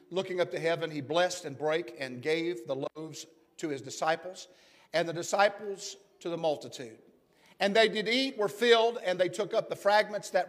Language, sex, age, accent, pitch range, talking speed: English, male, 50-69, American, 165-200 Hz, 195 wpm